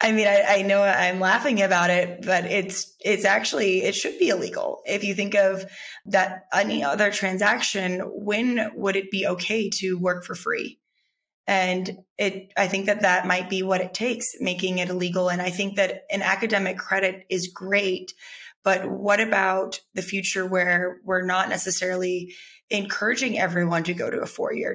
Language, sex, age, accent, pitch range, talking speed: English, female, 20-39, American, 185-205 Hz, 175 wpm